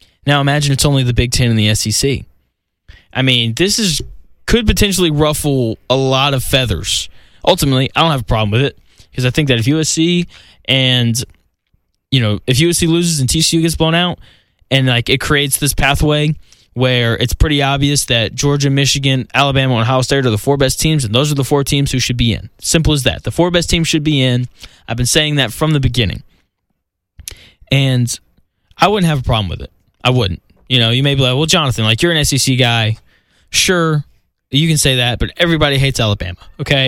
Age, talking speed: 10-29, 210 wpm